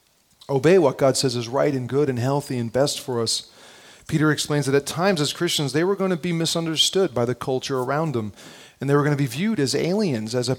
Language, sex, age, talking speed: English, male, 40-59, 245 wpm